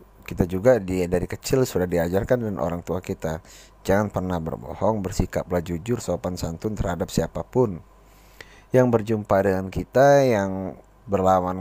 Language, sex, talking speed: Malay, male, 130 wpm